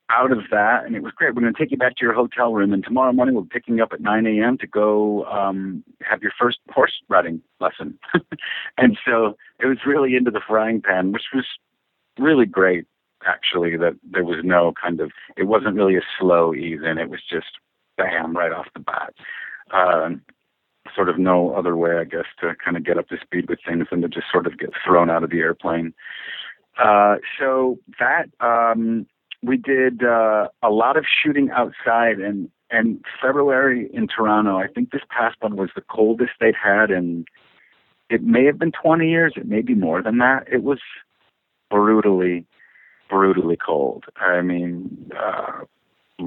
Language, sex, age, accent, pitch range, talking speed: English, male, 50-69, American, 90-125 Hz, 190 wpm